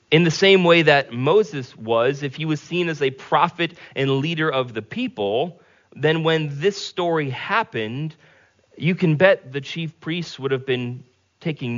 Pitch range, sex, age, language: 125-170 Hz, male, 30-49, English